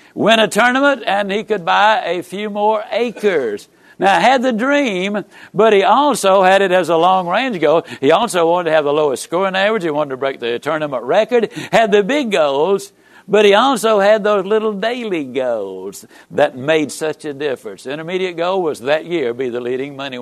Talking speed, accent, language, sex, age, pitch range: 200 wpm, American, English, male, 60-79, 135-210 Hz